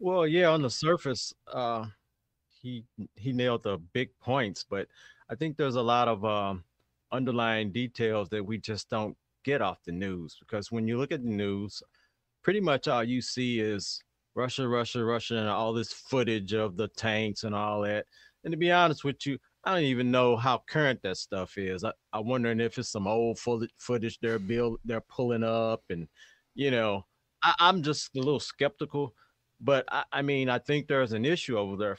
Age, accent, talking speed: 30-49, American, 195 wpm